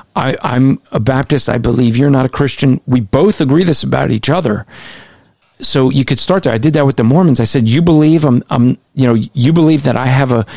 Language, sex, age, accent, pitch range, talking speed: English, male, 40-59, American, 120-145 Hz, 240 wpm